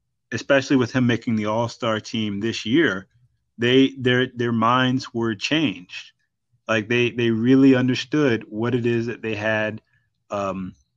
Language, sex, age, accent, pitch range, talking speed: English, male, 30-49, American, 115-130 Hz, 150 wpm